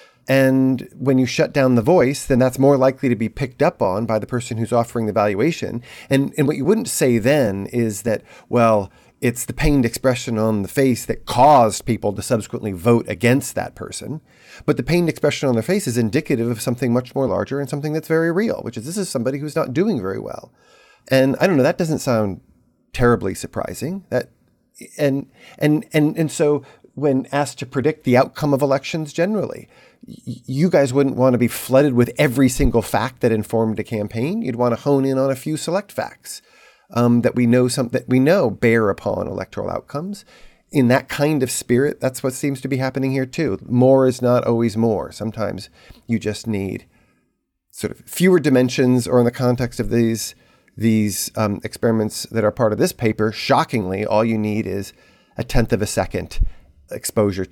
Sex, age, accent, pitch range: male, 40-59, American, 110-140 Hz